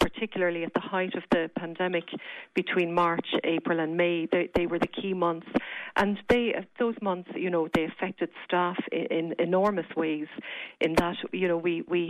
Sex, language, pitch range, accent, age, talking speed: female, English, 170-190 Hz, Irish, 40-59, 185 wpm